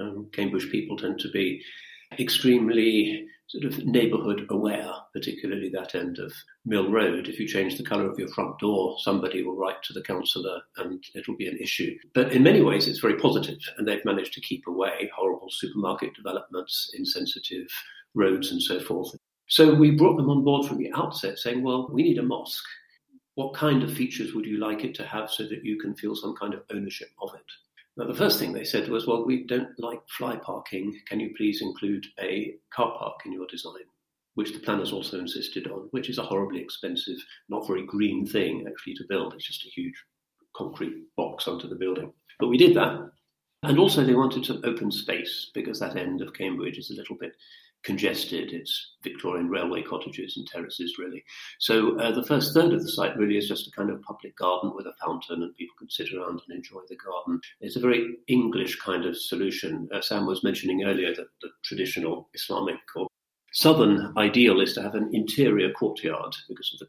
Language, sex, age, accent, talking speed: English, male, 50-69, British, 205 wpm